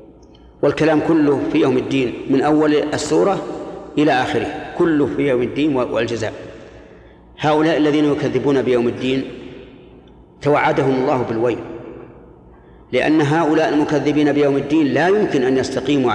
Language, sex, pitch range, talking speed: Arabic, male, 125-155 Hz, 120 wpm